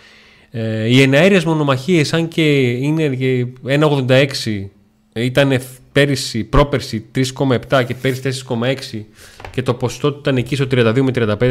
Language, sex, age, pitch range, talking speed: Greek, male, 30-49, 110-145 Hz, 120 wpm